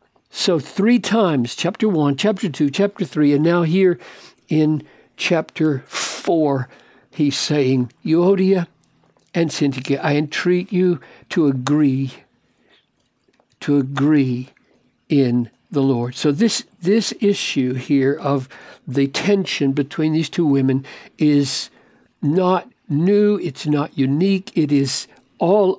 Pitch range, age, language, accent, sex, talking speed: 135-185 Hz, 60-79, English, American, male, 120 wpm